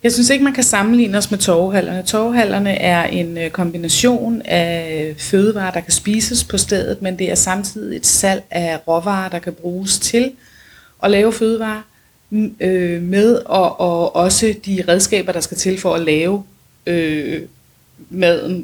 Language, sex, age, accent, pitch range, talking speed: Danish, female, 30-49, native, 175-220 Hz, 160 wpm